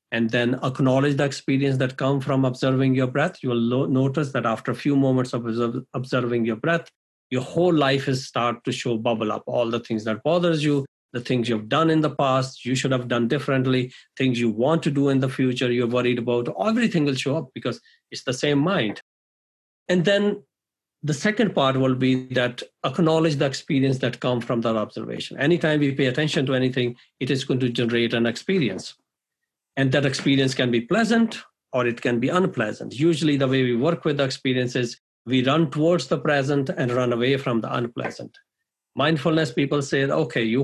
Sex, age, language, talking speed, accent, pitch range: male, 50-69, English, 200 wpm, Indian, 125-150 Hz